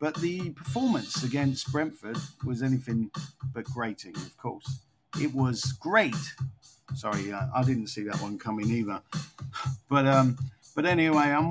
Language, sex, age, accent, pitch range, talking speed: English, male, 40-59, British, 120-145 Hz, 145 wpm